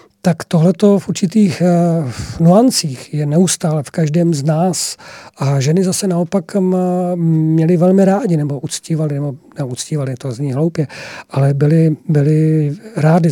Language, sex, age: Czech, male, 40-59